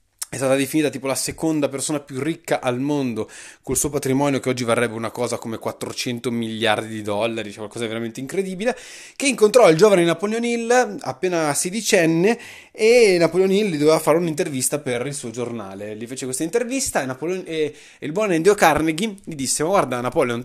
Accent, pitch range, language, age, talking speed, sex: native, 125-175 Hz, Italian, 20-39, 195 wpm, male